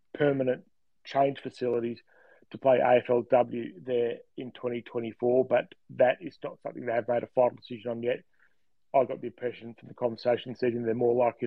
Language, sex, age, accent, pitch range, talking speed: English, male, 30-49, Australian, 120-140 Hz, 175 wpm